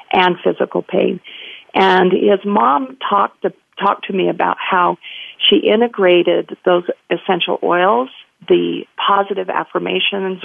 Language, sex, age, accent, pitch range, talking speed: English, female, 40-59, American, 180-215 Hz, 120 wpm